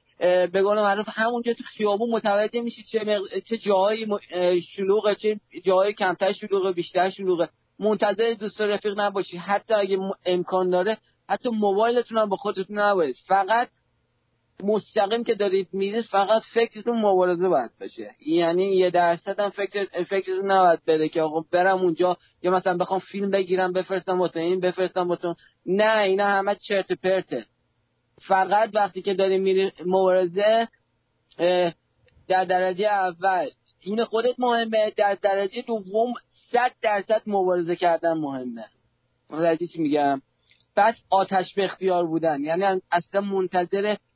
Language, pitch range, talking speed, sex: English, 175-210 Hz, 130 wpm, male